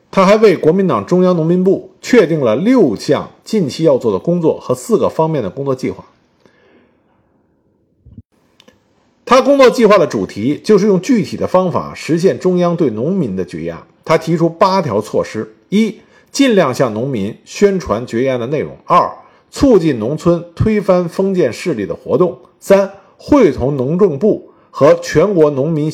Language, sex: Chinese, male